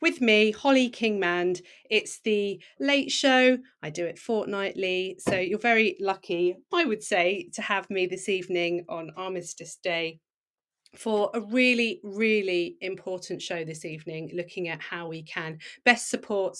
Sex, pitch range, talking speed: female, 175-225 Hz, 150 wpm